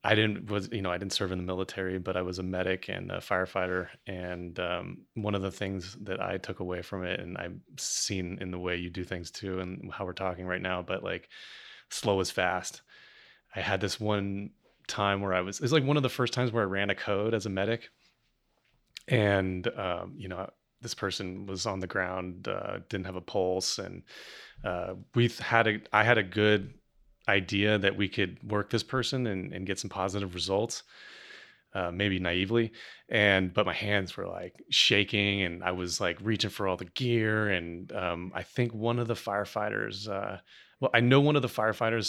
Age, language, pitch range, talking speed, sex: 30-49, English, 95-110 Hz, 210 wpm, male